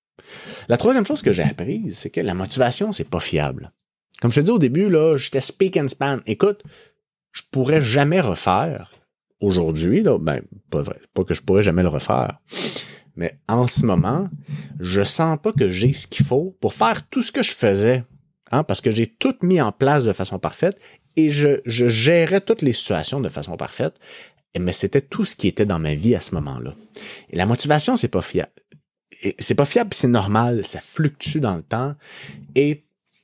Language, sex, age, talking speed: French, male, 30-49, 210 wpm